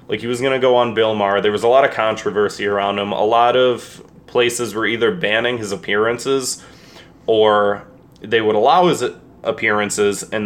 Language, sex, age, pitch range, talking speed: English, male, 20-39, 95-120 Hz, 190 wpm